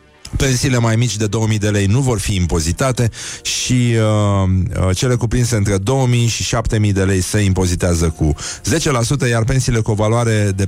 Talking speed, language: 175 wpm, Romanian